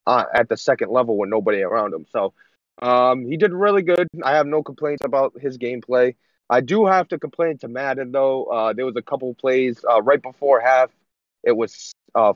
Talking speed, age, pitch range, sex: 210 wpm, 20-39, 125-155 Hz, male